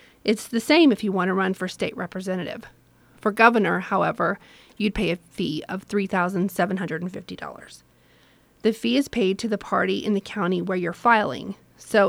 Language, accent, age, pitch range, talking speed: English, American, 30-49, 185-220 Hz, 170 wpm